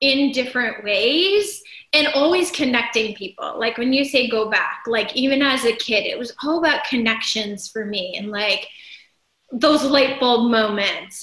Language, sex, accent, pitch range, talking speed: English, female, American, 225-290 Hz, 165 wpm